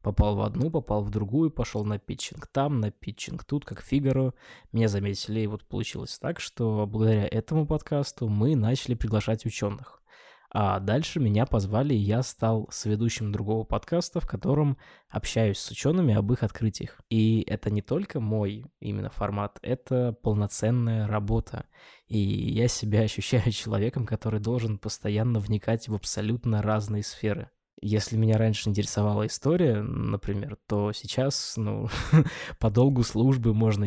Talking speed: 145 wpm